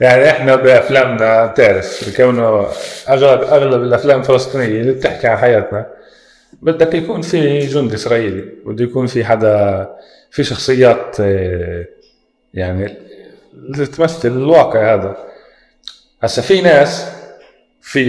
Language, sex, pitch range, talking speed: Arabic, male, 100-130 Hz, 105 wpm